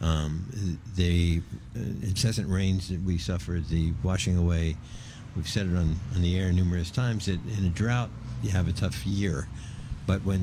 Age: 60-79